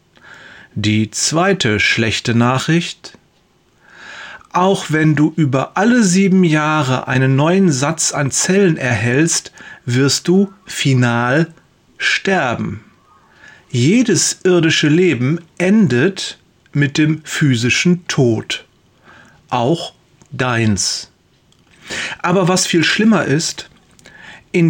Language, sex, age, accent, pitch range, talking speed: German, male, 40-59, German, 130-185 Hz, 90 wpm